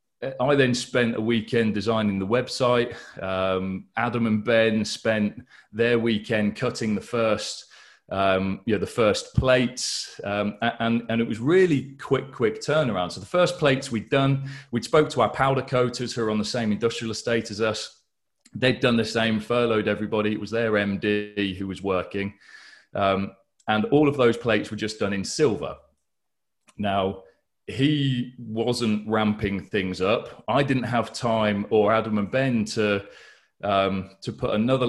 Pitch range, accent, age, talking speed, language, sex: 105-125 Hz, British, 30-49, 165 wpm, English, male